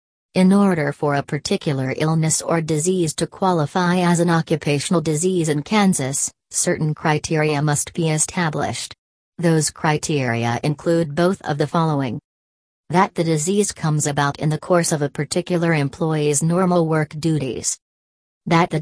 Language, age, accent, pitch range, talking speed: English, 40-59, American, 145-170 Hz, 145 wpm